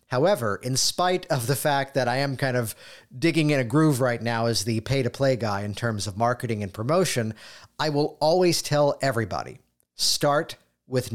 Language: English